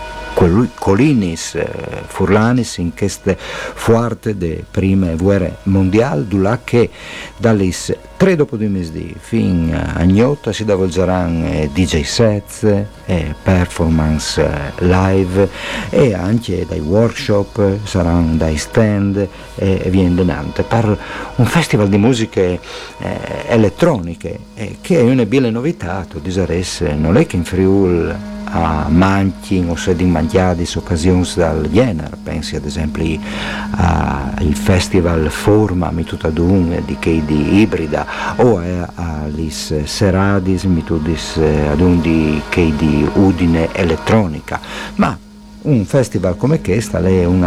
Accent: native